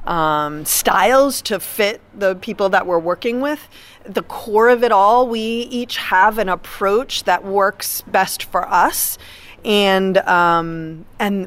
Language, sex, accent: English, female, American